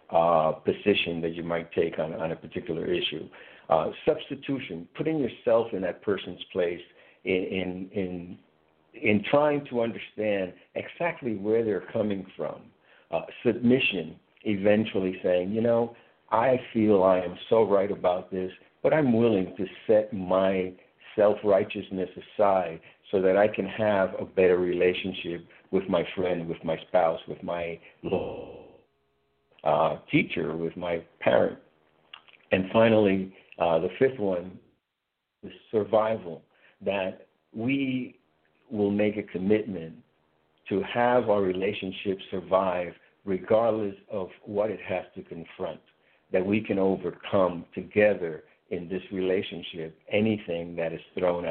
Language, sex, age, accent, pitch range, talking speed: English, male, 60-79, American, 85-105 Hz, 130 wpm